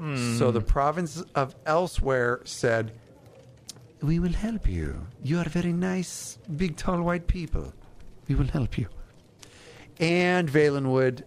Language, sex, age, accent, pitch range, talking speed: English, male, 50-69, American, 115-165 Hz, 130 wpm